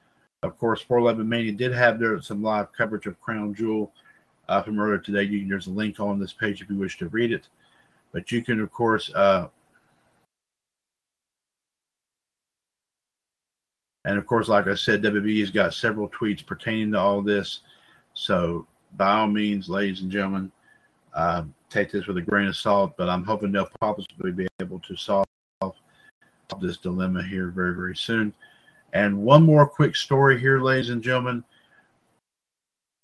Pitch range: 100-135 Hz